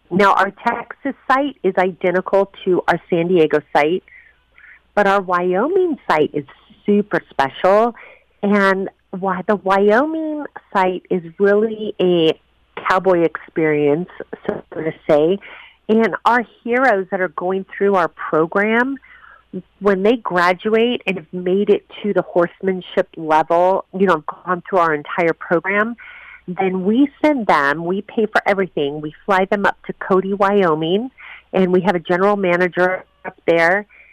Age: 40-59